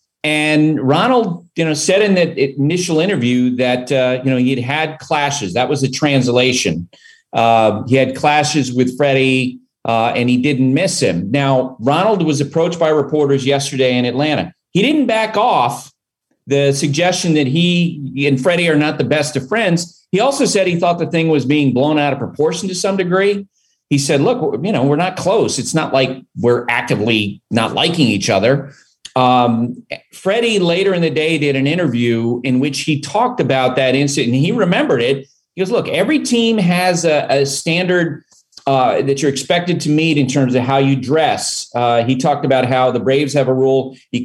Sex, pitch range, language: male, 130-160 Hz, English